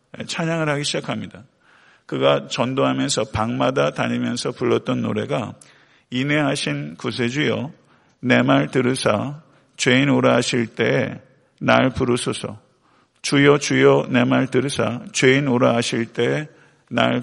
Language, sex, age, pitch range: Korean, male, 50-69, 115-140 Hz